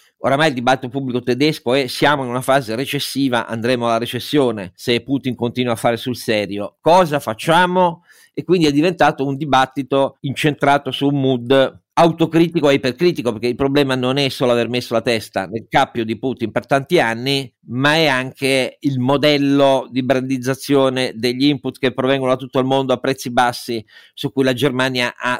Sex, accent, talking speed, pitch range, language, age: male, native, 180 wpm, 115-140 Hz, Italian, 50-69